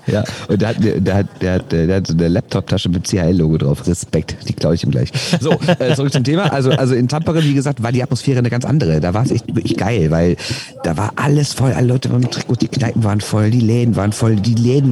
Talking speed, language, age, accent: 260 wpm, German, 50-69, German